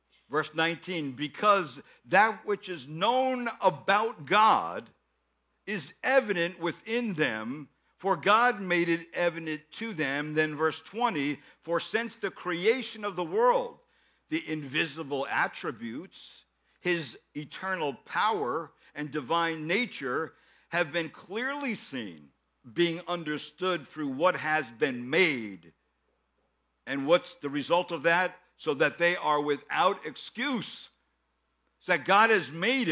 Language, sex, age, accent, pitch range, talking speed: English, male, 60-79, American, 155-215 Hz, 120 wpm